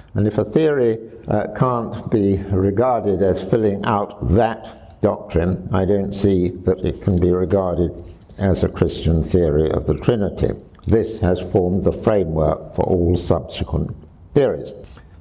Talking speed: 145 wpm